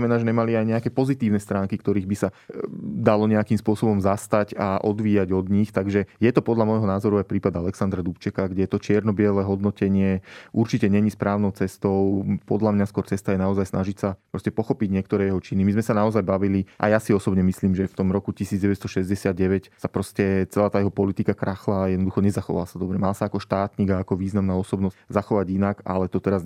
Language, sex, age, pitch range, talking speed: Slovak, male, 20-39, 95-100 Hz, 200 wpm